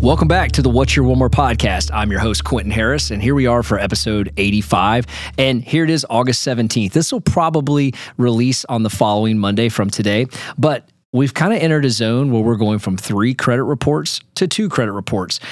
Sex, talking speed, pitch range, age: male, 210 wpm, 105-130 Hz, 30-49